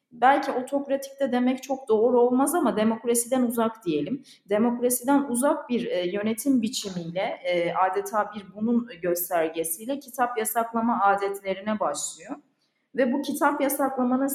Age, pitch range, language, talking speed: 30-49, 200-260 Hz, Turkish, 115 wpm